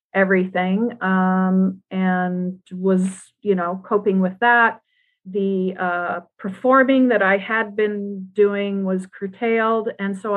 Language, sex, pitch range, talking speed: English, female, 185-230 Hz, 120 wpm